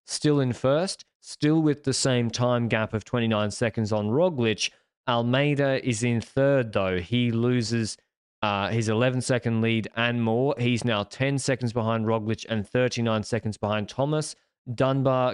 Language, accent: English, Australian